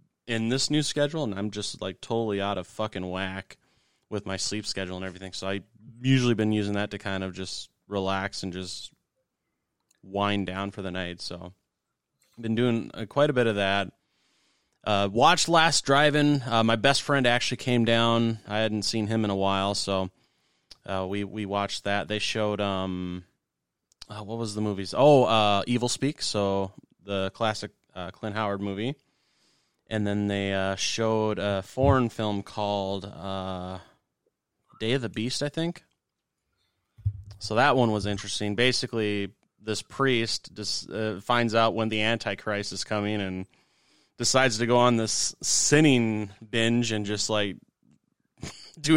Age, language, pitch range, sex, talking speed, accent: 30-49, English, 100-120 Hz, male, 165 wpm, American